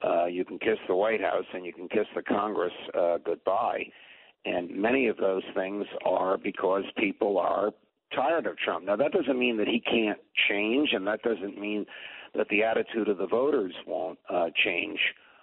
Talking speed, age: 185 wpm, 60-79